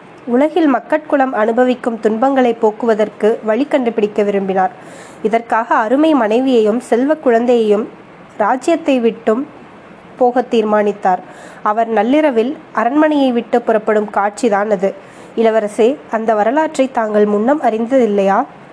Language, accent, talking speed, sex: Tamil, native, 95 wpm, female